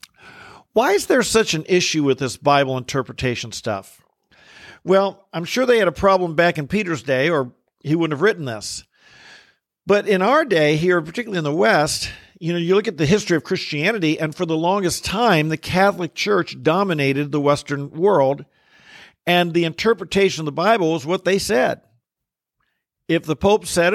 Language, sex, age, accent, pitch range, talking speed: English, male, 50-69, American, 145-195 Hz, 180 wpm